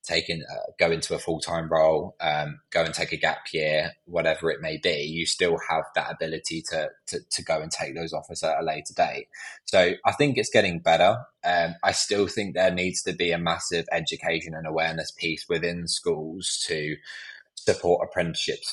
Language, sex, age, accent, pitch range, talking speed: English, male, 20-39, British, 80-100 Hz, 190 wpm